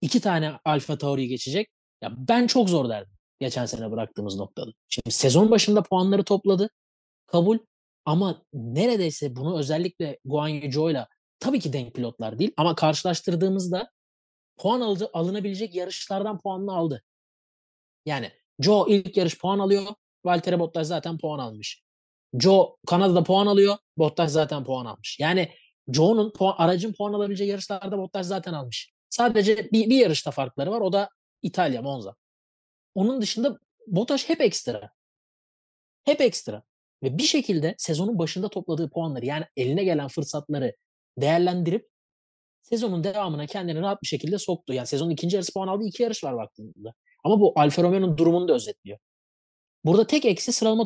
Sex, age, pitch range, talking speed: male, 30-49, 145-200 Hz, 145 wpm